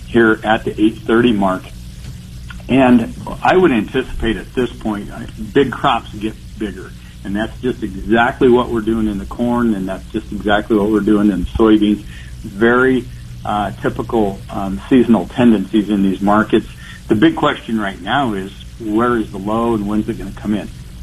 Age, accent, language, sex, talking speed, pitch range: 50-69, American, English, male, 180 wpm, 100-120 Hz